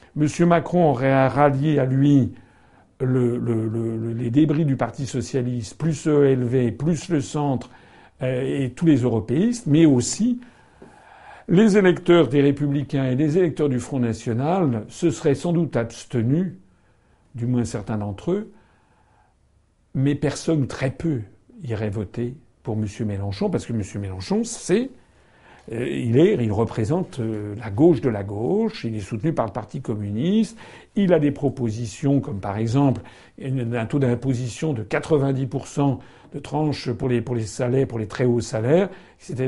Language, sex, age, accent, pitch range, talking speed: French, male, 60-79, French, 115-155 Hz, 160 wpm